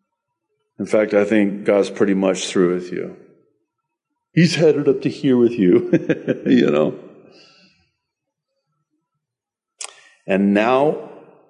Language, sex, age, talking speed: English, male, 50-69, 110 wpm